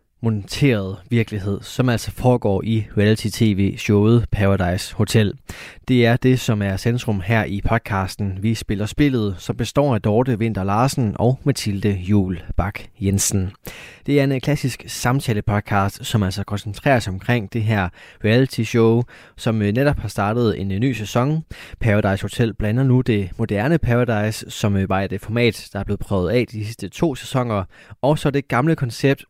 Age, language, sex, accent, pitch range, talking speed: 20-39, Danish, male, native, 100-125 Hz, 155 wpm